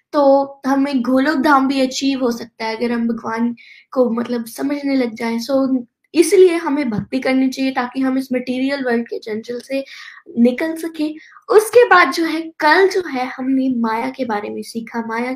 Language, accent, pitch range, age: Hindi, native, 240-290 Hz, 20-39